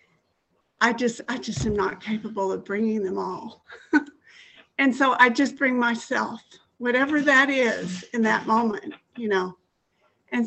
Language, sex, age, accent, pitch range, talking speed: English, female, 60-79, American, 205-245 Hz, 150 wpm